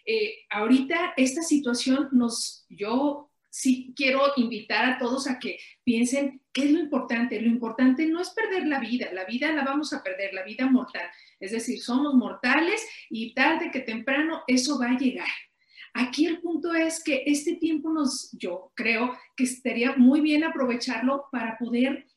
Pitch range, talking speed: 245-285 Hz, 170 wpm